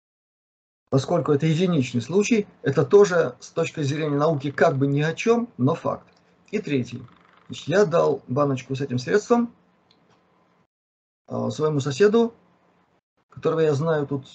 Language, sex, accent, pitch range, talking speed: Russian, male, native, 135-165 Hz, 130 wpm